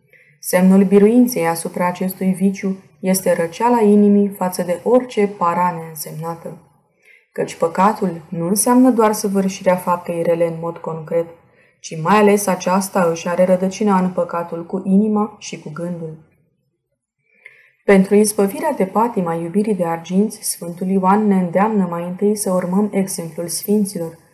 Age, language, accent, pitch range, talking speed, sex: 20-39, Romanian, native, 170-205 Hz, 140 wpm, female